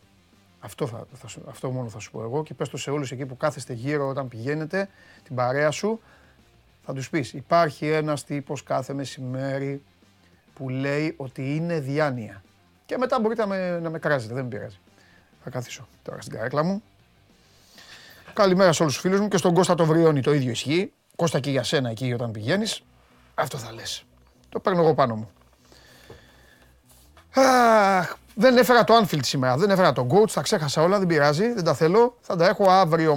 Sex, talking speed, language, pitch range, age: male, 185 wpm, Greek, 135-205 Hz, 30-49